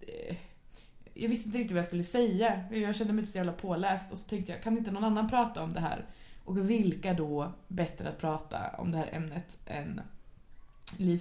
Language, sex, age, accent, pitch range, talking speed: English, female, 20-39, Swedish, 180-235 Hz, 210 wpm